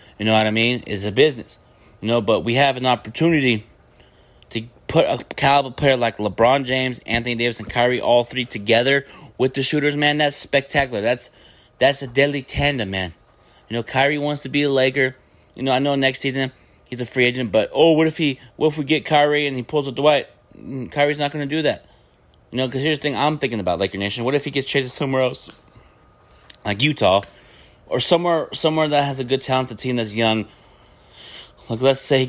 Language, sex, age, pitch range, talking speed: English, male, 30-49, 110-140 Hz, 215 wpm